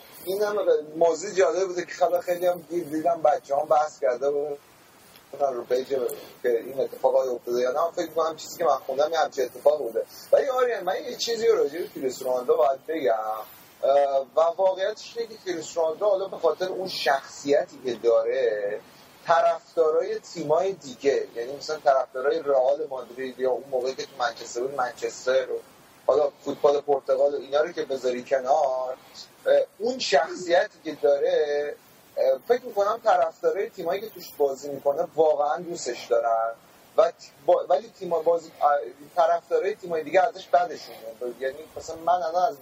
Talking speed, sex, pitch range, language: 155 wpm, male, 145-240 Hz, Persian